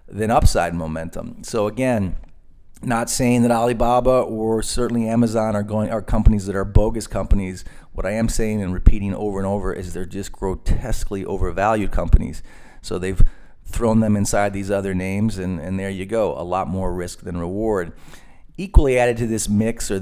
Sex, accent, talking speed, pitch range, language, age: male, American, 180 wpm, 90-110 Hz, English, 40-59